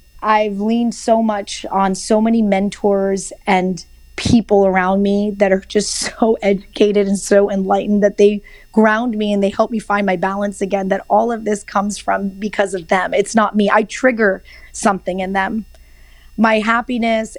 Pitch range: 195-225 Hz